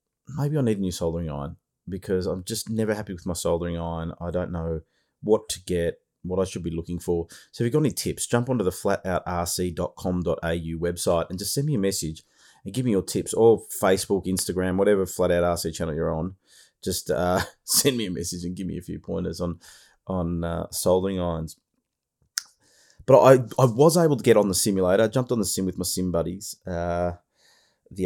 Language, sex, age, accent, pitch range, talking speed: English, male, 30-49, Australian, 85-105 Hz, 205 wpm